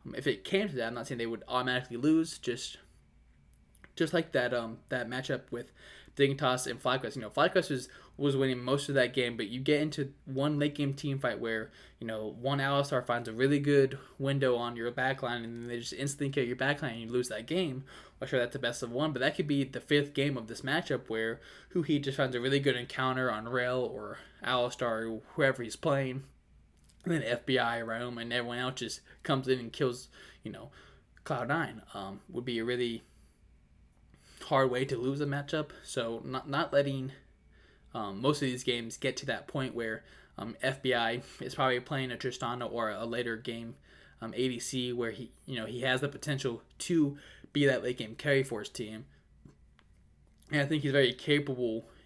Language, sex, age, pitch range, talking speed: English, male, 10-29, 115-140 Hz, 205 wpm